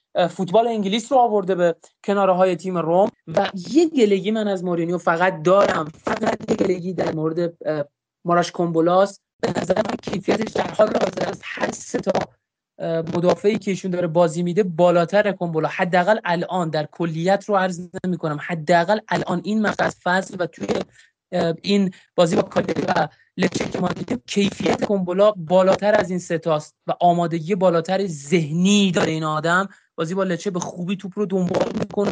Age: 30-49